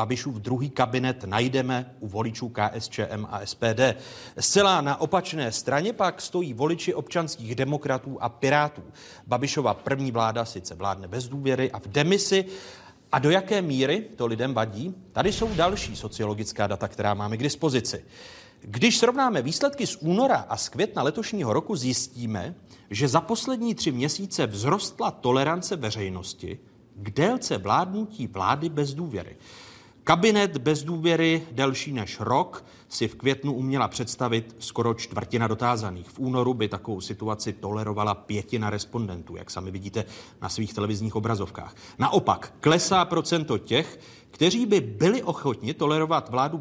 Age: 40-59